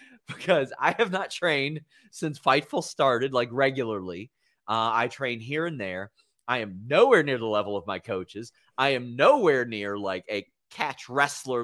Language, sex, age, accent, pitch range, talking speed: English, male, 30-49, American, 105-145 Hz, 170 wpm